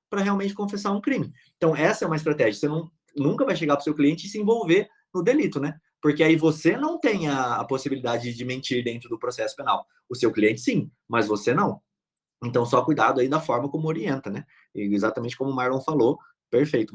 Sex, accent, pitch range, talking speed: male, Brazilian, 125-160 Hz, 210 wpm